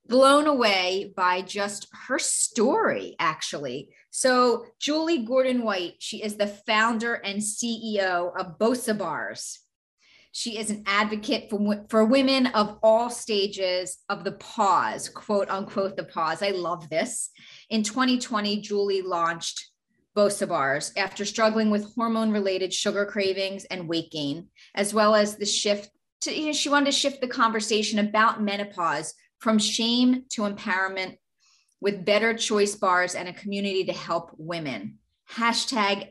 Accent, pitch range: American, 190-230 Hz